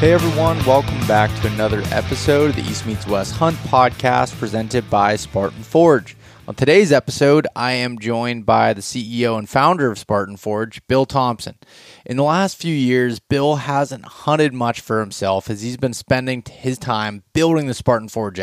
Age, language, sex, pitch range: 20-39, English, male, 110-140 Hz